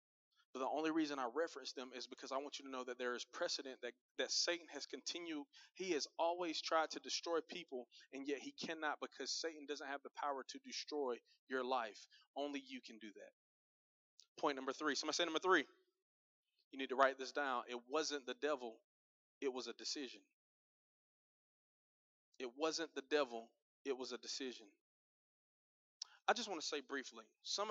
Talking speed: 185 wpm